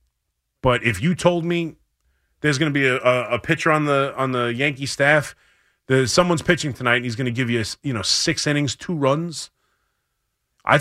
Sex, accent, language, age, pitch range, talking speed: male, American, English, 30-49, 115-155 Hz, 195 wpm